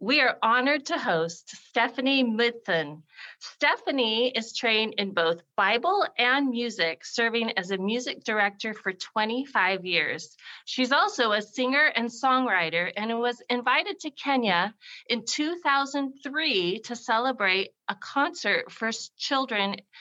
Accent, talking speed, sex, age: American, 125 wpm, female, 40-59